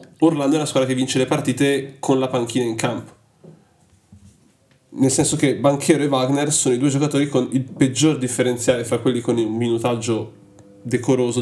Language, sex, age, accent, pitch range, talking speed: Italian, male, 20-39, native, 120-135 Hz, 175 wpm